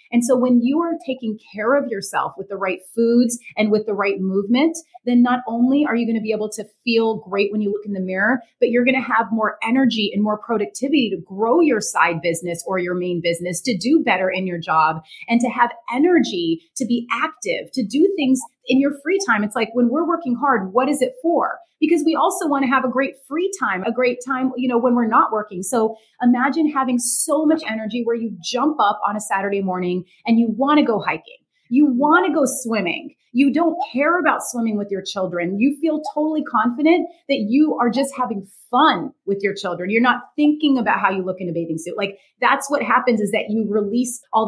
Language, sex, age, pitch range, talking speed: English, female, 30-49, 200-275 Hz, 230 wpm